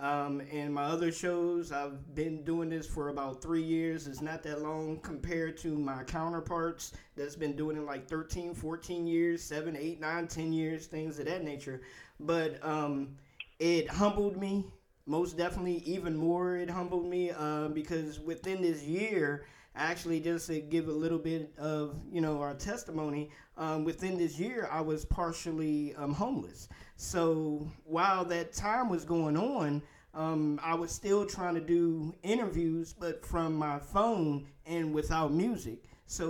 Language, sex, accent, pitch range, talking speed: English, male, American, 150-170 Hz, 165 wpm